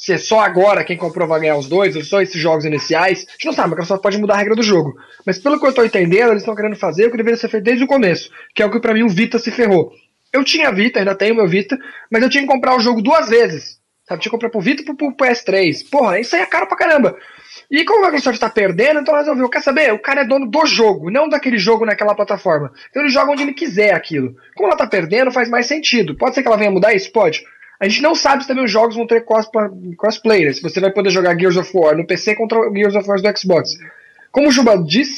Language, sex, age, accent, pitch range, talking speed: Portuguese, male, 20-39, Brazilian, 195-270 Hz, 280 wpm